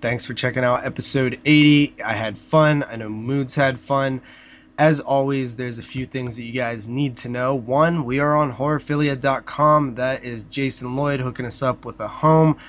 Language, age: English, 20-39